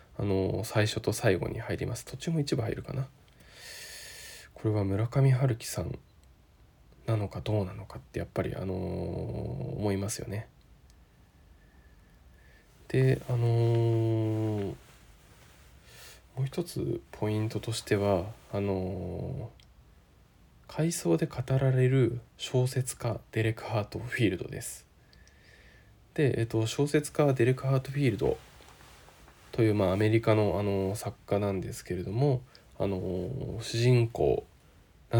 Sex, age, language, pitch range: male, 20-39, Japanese, 95-120 Hz